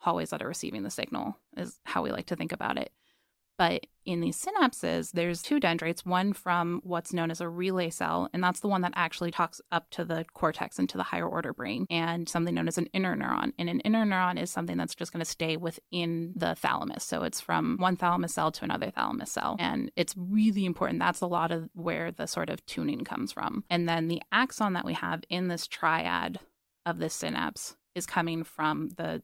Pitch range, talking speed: 165-200 Hz, 225 wpm